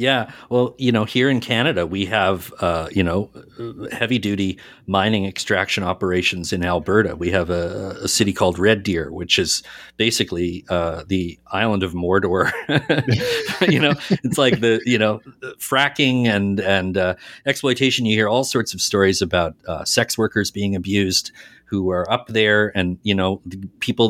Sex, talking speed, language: male, 165 wpm, English